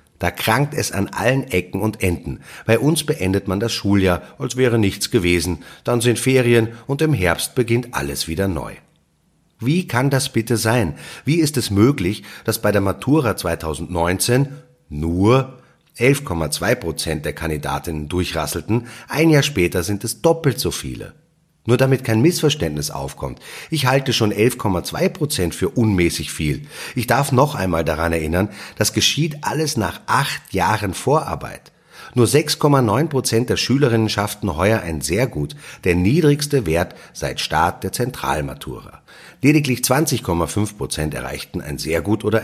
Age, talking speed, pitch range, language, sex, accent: 30-49, 145 wpm, 85-125 Hz, German, male, German